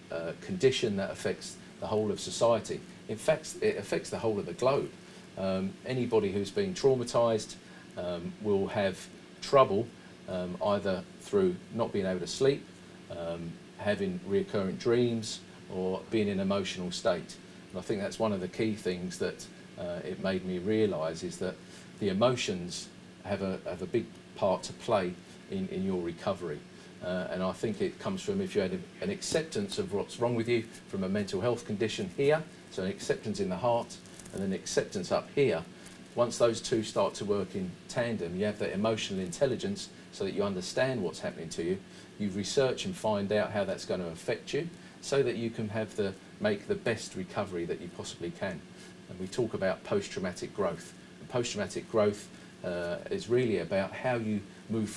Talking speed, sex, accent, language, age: 185 wpm, male, British, English, 50-69